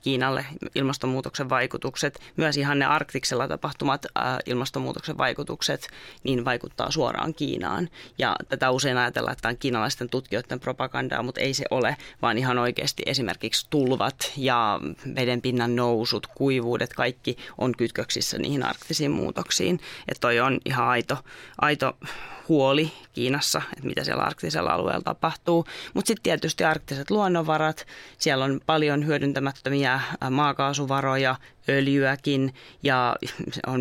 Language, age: Finnish, 30-49